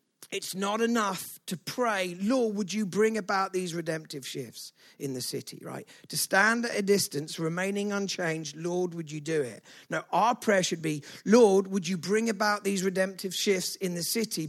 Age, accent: 50-69, British